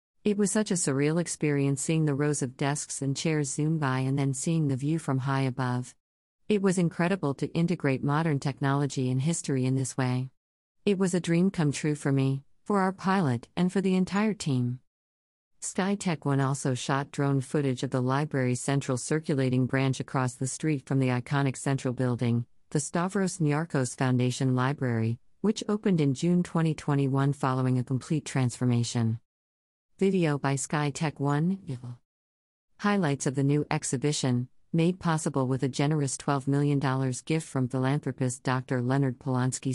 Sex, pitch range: female, 130-155 Hz